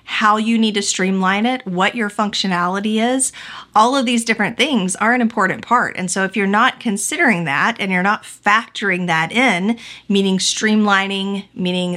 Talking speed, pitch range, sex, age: 175 wpm, 185-225 Hz, female, 30-49